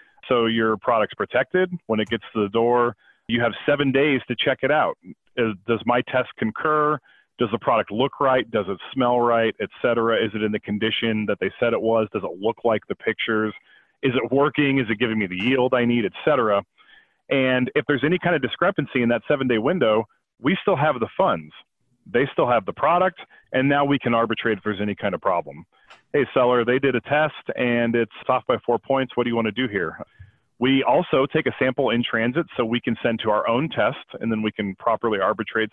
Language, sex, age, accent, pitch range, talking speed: English, male, 40-59, American, 115-135 Hz, 225 wpm